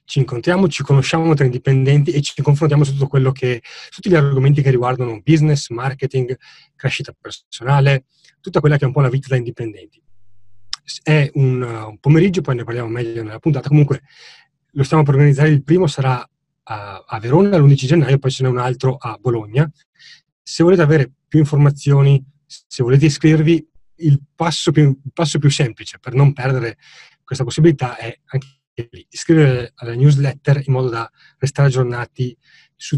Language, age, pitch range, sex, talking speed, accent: Italian, 30-49, 125-150 Hz, male, 165 wpm, native